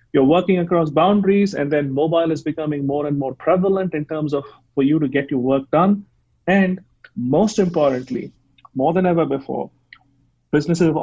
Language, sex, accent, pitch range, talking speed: English, male, Indian, 135-180 Hz, 175 wpm